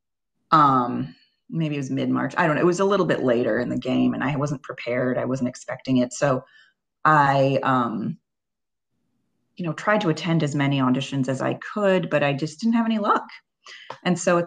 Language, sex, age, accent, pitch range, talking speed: English, female, 30-49, American, 140-190 Hz, 205 wpm